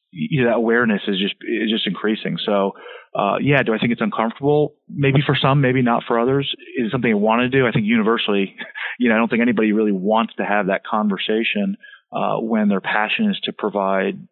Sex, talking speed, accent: male, 220 wpm, American